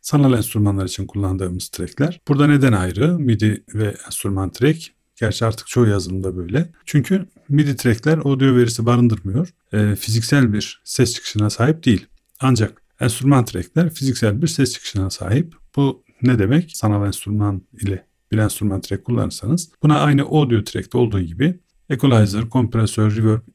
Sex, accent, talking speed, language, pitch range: male, native, 145 wpm, Turkish, 105-145 Hz